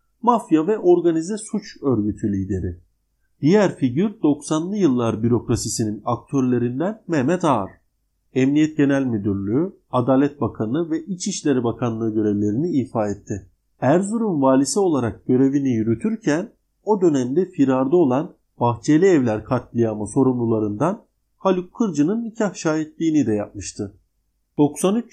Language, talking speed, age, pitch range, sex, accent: Turkish, 105 wpm, 50-69, 115-170 Hz, male, native